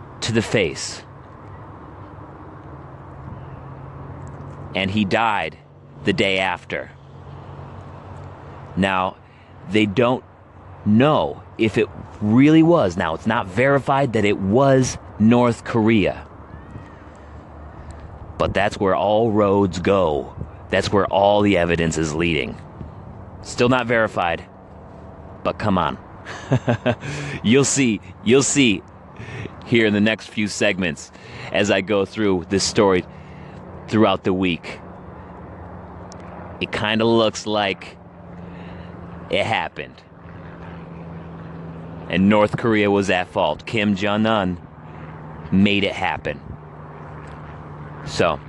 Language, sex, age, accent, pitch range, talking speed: English, male, 30-49, American, 85-110 Hz, 105 wpm